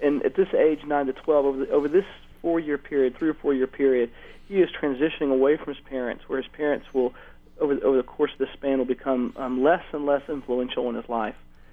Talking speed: 230 wpm